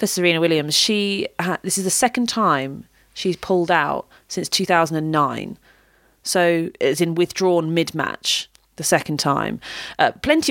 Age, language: 30-49, English